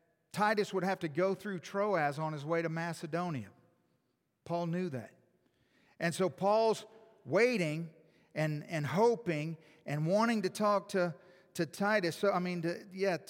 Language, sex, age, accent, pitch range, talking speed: English, male, 50-69, American, 130-205 Hz, 155 wpm